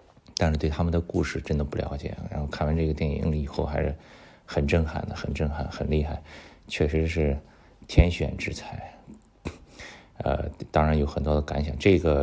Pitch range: 75-90 Hz